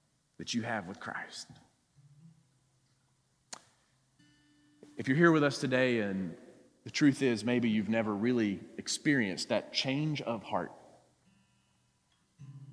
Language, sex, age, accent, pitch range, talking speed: English, male, 40-59, American, 130-175 Hz, 115 wpm